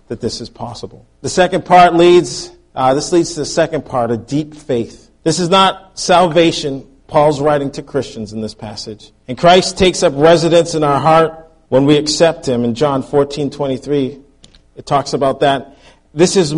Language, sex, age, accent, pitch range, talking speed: English, male, 40-59, American, 130-160 Hz, 185 wpm